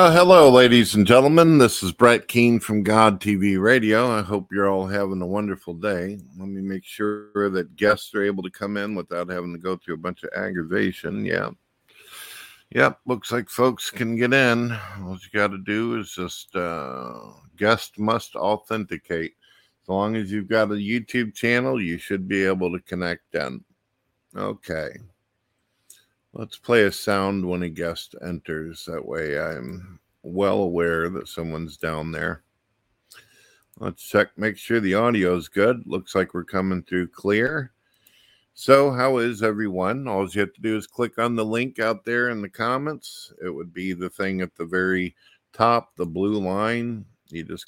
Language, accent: English, American